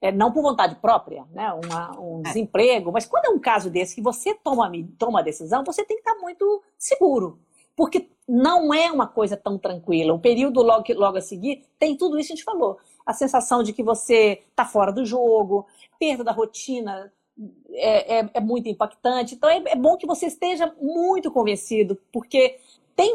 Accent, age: Brazilian, 50-69